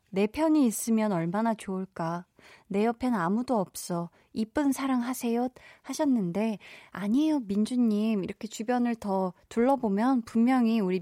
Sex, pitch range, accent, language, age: female, 185-255 Hz, native, Korean, 20-39